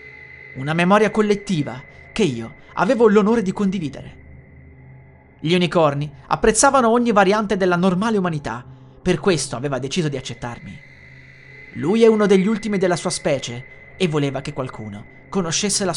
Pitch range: 130-205 Hz